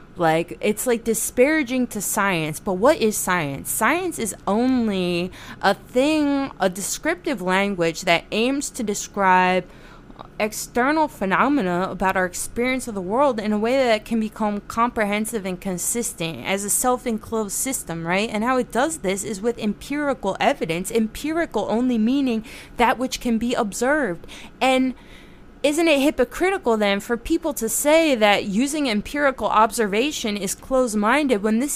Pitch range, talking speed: 200-265 Hz, 145 wpm